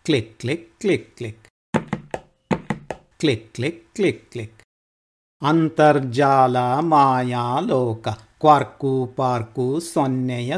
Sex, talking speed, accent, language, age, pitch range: male, 75 wpm, native, Kannada, 50-69, 115-145 Hz